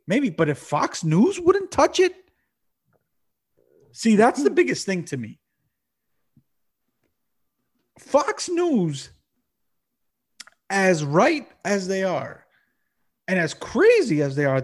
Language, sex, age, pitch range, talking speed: English, male, 30-49, 135-230 Hz, 115 wpm